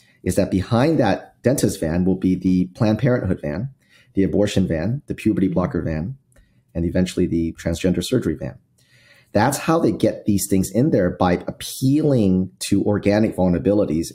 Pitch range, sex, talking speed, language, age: 90-110 Hz, male, 160 wpm, English, 30-49